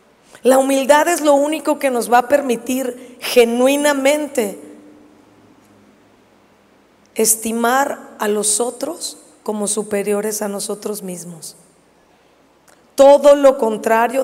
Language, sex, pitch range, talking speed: Spanish, female, 210-250 Hz, 95 wpm